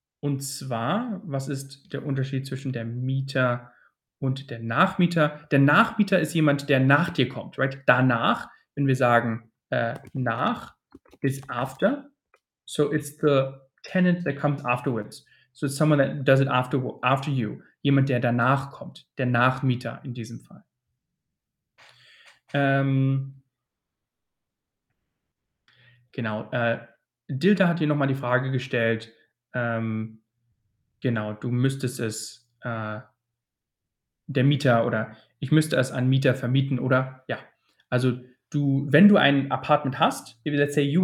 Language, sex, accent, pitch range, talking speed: German, male, German, 125-145 Hz, 135 wpm